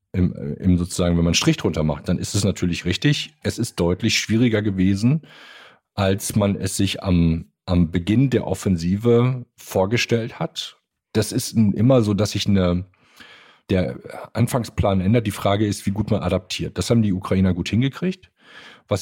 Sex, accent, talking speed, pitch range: male, German, 165 wpm, 90-115 Hz